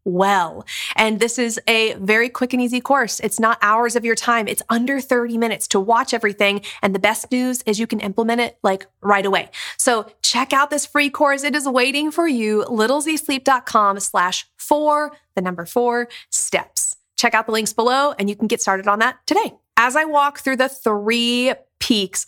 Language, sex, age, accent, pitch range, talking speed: English, female, 30-49, American, 210-270 Hz, 195 wpm